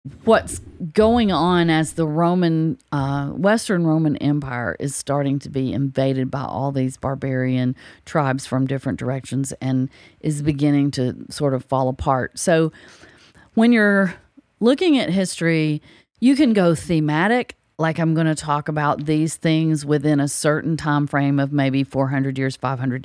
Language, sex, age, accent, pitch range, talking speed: English, female, 40-59, American, 140-175 Hz, 155 wpm